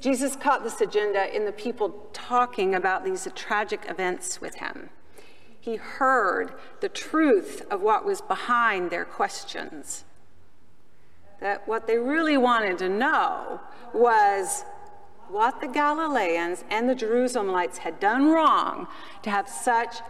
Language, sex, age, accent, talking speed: English, female, 40-59, American, 130 wpm